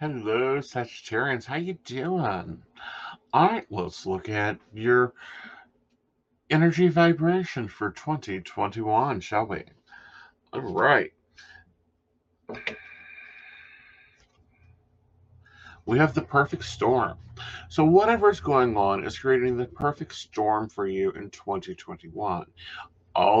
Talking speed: 100 wpm